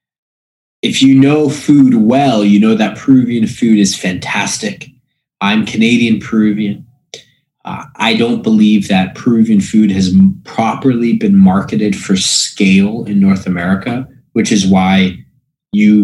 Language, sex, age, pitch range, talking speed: English, male, 20-39, 100-145 Hz, 130 wpm